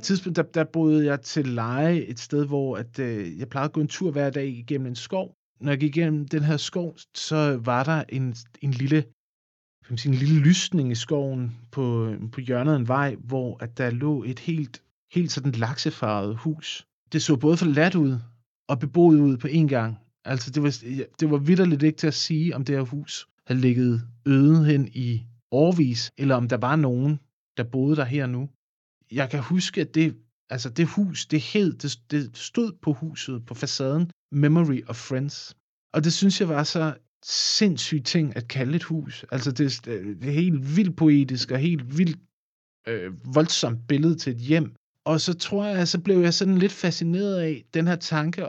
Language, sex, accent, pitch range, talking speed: Danish, male, native, 125-160 Hz, 195 wpm